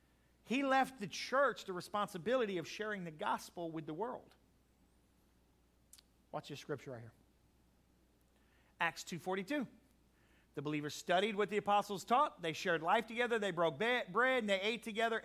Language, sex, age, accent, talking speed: English, male, 40-59, American, 150 wpm